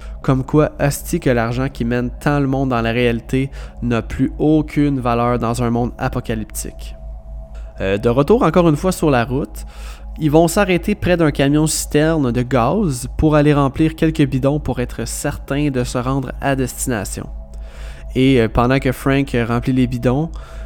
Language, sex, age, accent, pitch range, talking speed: French, male, 20-39, Canadian, 120-145 Hz, 165 wpm